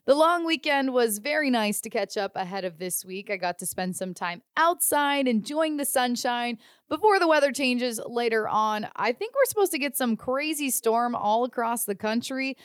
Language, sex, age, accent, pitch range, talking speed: English, female, 20-39, American, 200-285 Hz, 200 wpm